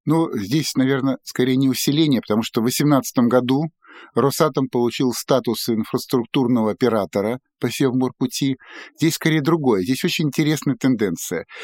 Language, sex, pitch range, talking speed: Russian, male, 120-155 Hz, 130 wpm